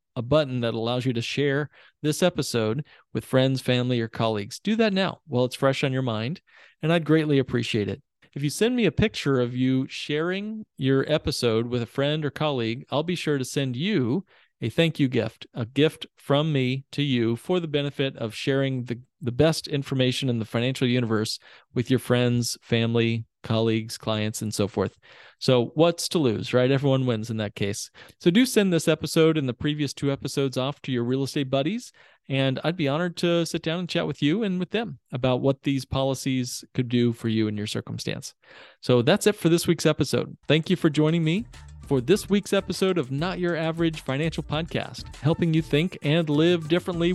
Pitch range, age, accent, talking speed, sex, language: 125-160 Hz, 40-59, American, 205 wpm, male, English